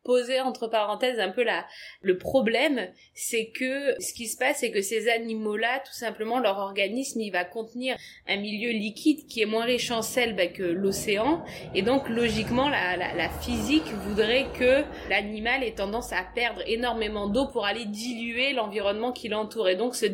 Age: 20-39